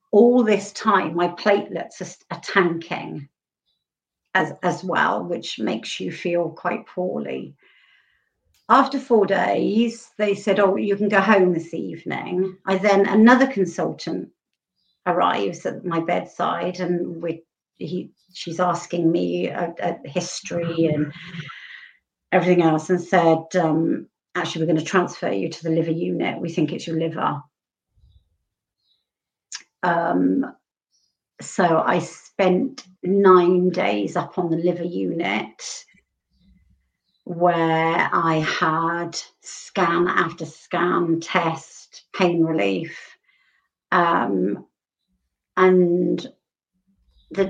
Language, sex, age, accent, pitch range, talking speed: English, female, 50-69, British, 165-195 Hz, 110 wpm